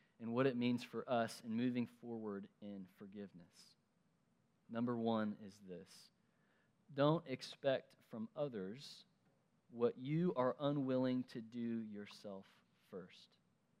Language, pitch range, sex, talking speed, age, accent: English, 120-165 Hz, male, 115 wpm, 30-49, American